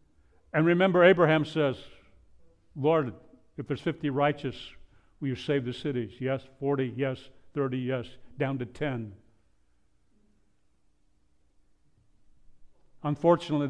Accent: American